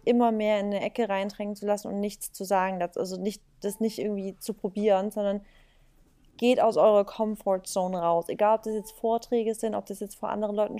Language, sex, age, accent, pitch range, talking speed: German, female, 20-39, German, 210-235 Hz, 210 wpm